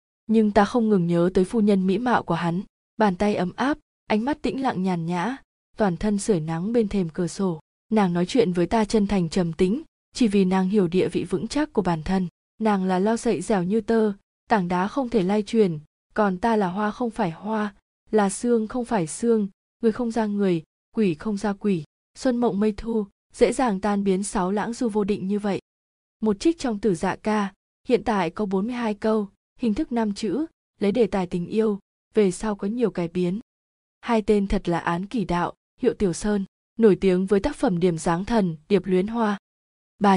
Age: 20-39